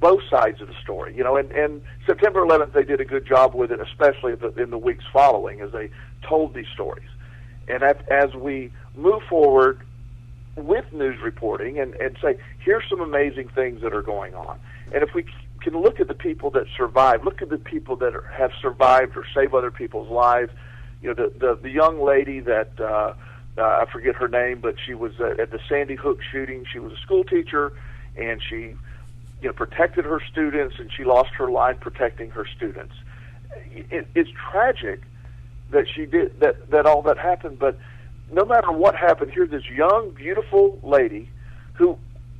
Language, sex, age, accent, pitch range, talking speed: English, male, 50-69, American, 120-160 Hz, 195 wpm